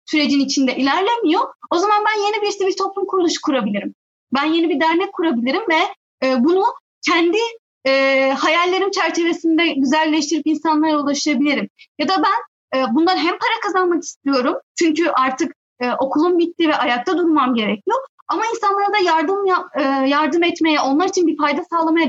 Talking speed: 140 wpm